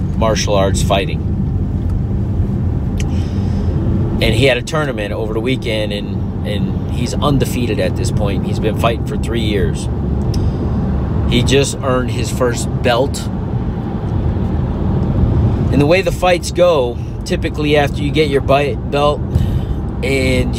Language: English